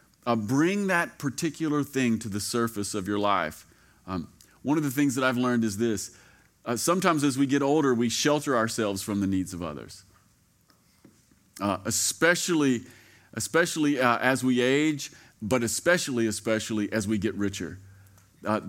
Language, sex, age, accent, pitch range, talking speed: English, male, 40-59, American, 105-140 Hz, 160 wpm